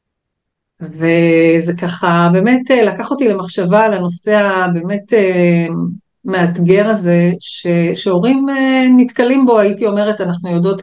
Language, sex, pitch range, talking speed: Hebrew, female, 175-205 Hz, 100 wpm